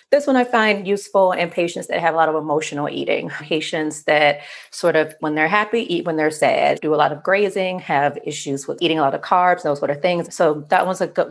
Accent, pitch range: American, 150-205 Hz